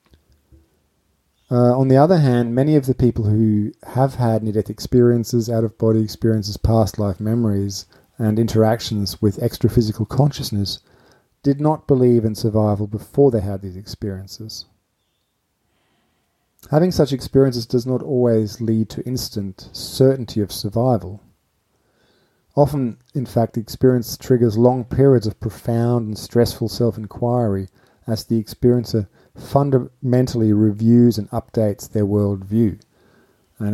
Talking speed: 125 wpm